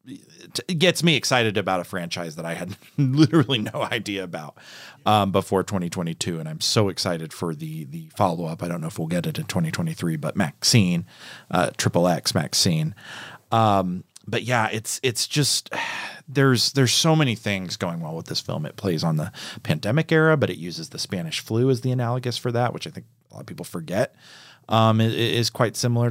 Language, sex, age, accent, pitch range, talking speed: English, male, 40-59, American, 90-140 Hz, 205 wpm